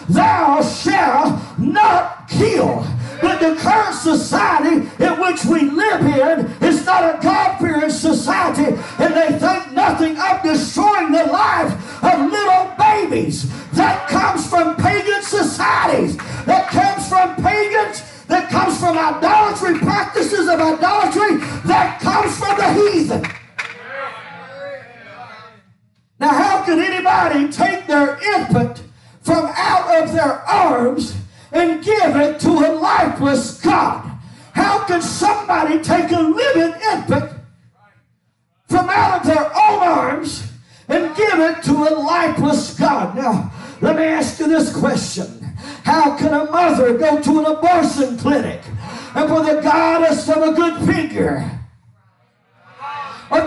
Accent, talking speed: American, 130 wpm